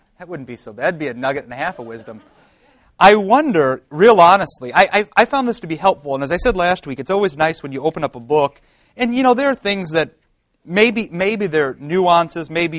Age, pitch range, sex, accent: 30-49, 125-165 Hz, male, American